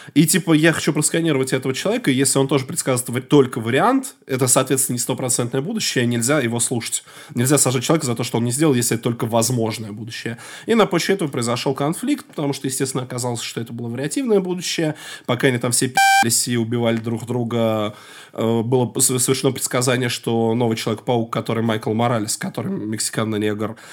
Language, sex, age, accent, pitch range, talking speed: Russian, male, 20-39, native, 120-180 Hz, 180 wpm